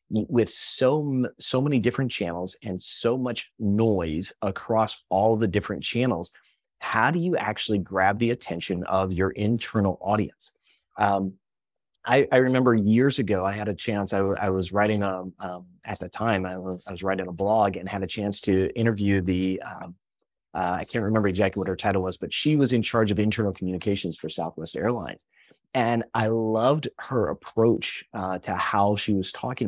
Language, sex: English, male